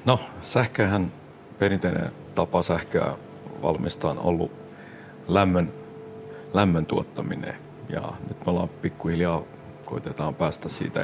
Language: Finnish